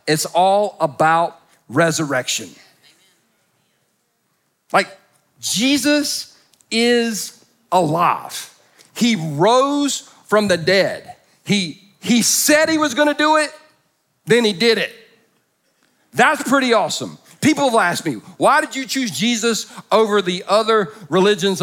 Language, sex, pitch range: English, male, 175-240 Hz